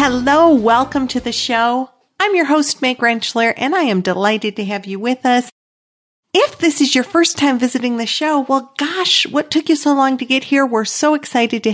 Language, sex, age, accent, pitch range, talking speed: English, female, 50-69, American, 195-255 Hz, 215 wpm